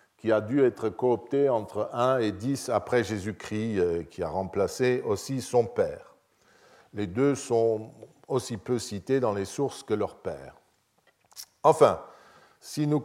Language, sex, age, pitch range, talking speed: French, male, 50-69, 105-135 Hz, 145 wpm